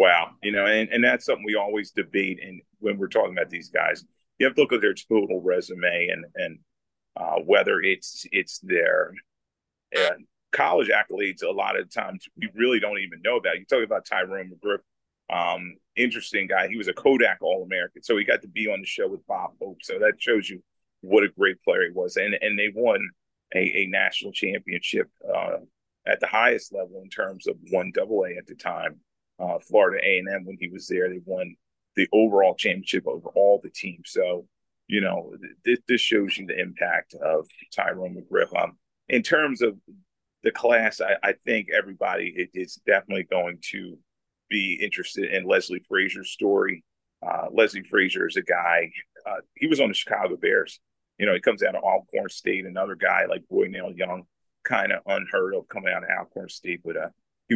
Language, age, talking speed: English, 30-49, 195 wpm